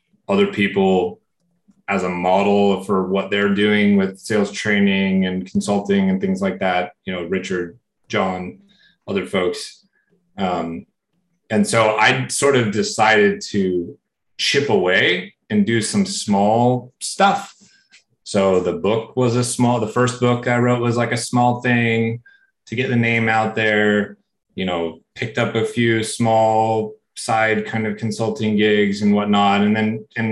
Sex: male